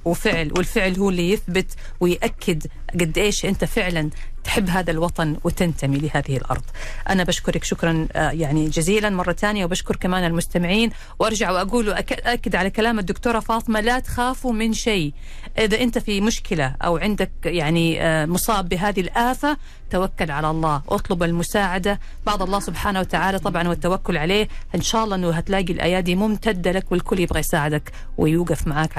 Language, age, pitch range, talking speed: Arabic, 40-59, 155-210 Hz, 145 wpm